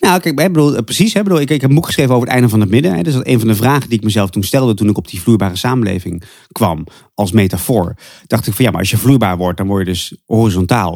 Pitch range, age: 95-125 Hz, 30-49